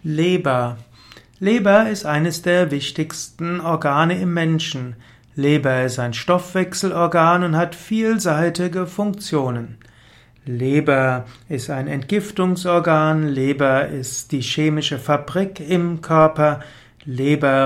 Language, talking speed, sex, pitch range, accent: German, 100 wpm, male, 135-175 Hz, German